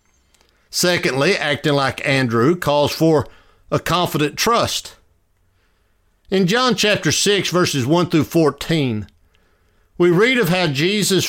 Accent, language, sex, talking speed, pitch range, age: American, English, male, 115 wpm, 105-170 Hz, 60-79